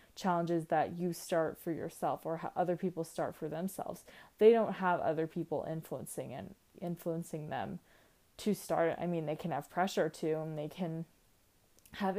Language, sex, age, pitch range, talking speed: English, female, 20-39, 165-205 Hz, 170 wpm